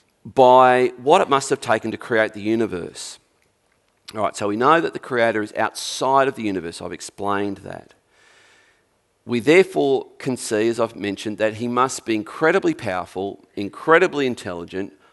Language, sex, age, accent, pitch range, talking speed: English, male, 40-59, Australian, 105-130 Hz, 165 wpm